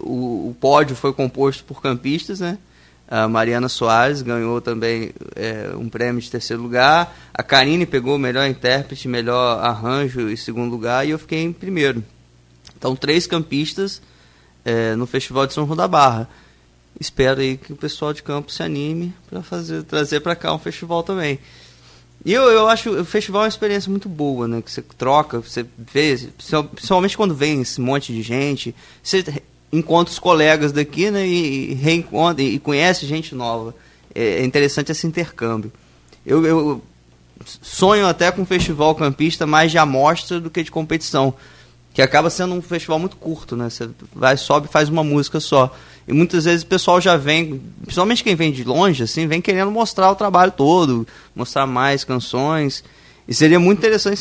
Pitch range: 120-170 Hz